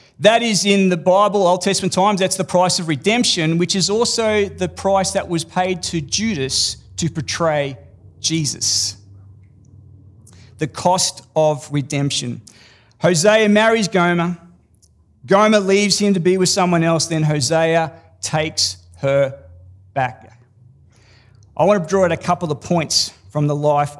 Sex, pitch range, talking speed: male, 140-200 Hz, 145 wpm